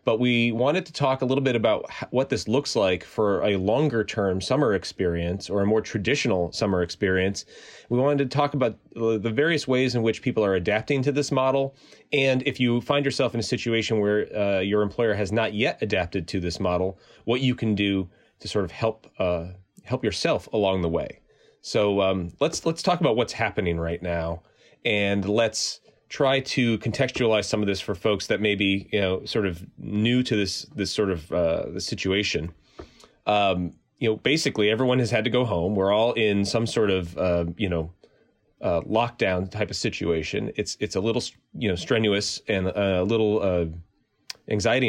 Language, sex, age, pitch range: English, male, 30-49, 95-125 Hz